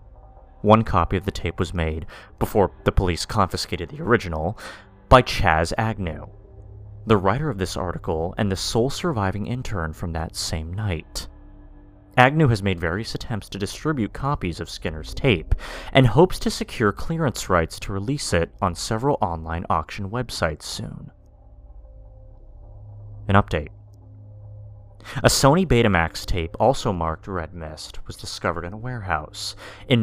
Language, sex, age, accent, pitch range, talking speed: English, male, 30-49, American, 90-110 Hz, 145 wpm